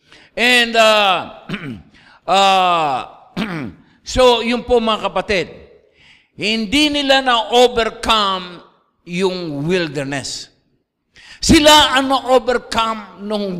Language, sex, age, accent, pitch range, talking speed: English, male, 50-69, Filipino, 225-330 Hz, 80 wpm